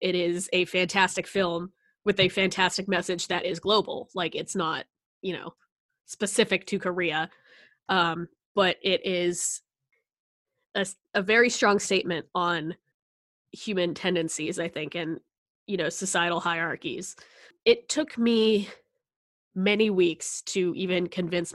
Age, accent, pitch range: 20-39, American, 175-215 Hz